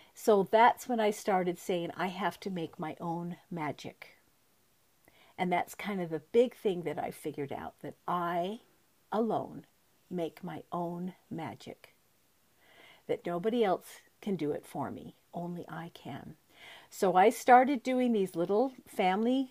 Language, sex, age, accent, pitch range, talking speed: English, female, 50-69, American, 180-270 Hz, 150 wpm